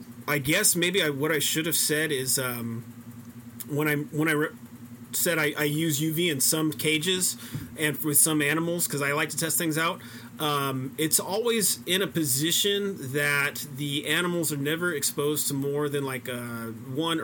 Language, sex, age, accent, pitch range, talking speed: English, male, 30-49, American, 125-160 Hz, 185 wpm